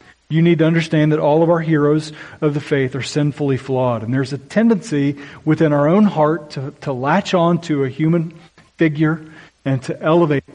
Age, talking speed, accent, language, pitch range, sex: 40-59, 195 wpm, American, English, 125-160 Hz, male